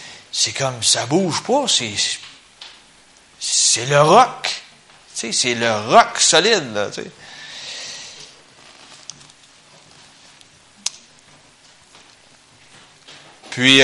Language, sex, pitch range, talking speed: French, male, 125-175 Hz, 55 wpm